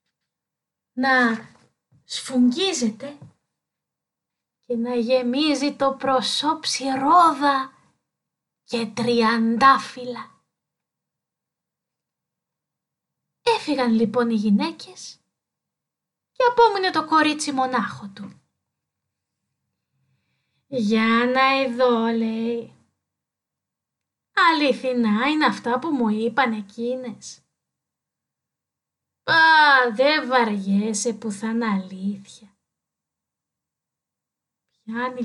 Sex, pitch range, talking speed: female, 230-295 Hz, 65 wpm